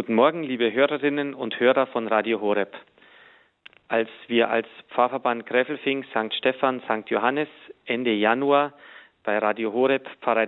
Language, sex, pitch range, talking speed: German, male, 120-145 Hz, 135 wpm